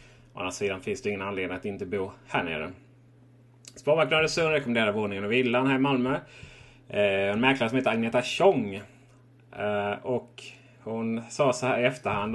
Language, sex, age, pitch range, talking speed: Swedish, male, 30-49, 115-135 Hz, 165 wpm